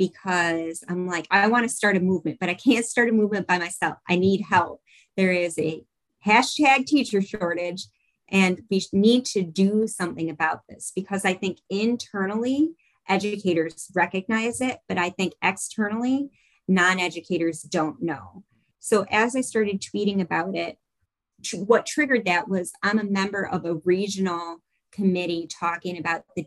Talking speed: 160 wpm